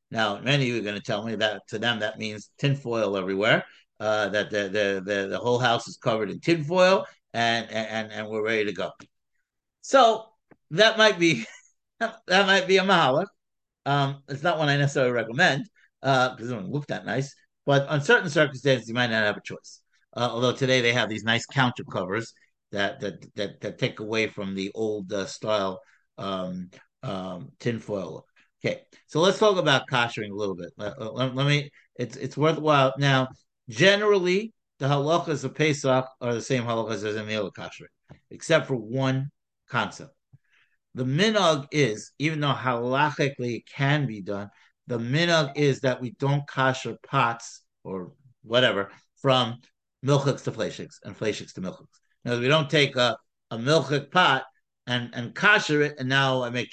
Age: 60-79